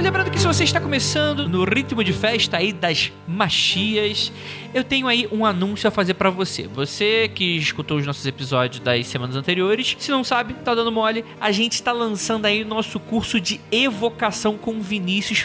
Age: 20-39